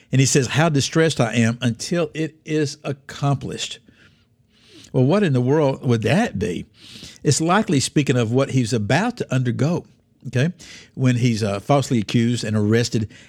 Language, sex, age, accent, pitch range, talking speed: English, male, 60-79, American, 115-150 Hz, 165 wpm